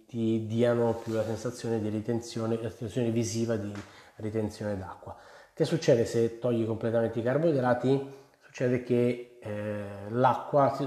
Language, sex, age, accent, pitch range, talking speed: Italian, male, 20-39, native, 115-130 Hz, 125 wpm